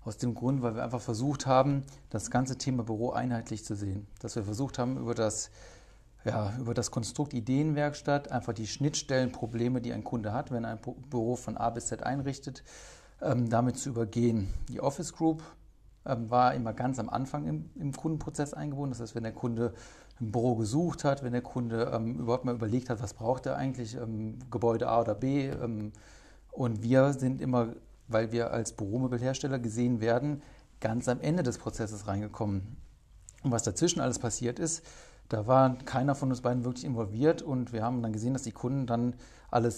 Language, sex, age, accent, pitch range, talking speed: German, male, 40-59, German, 115-130 Hz, 180 wpm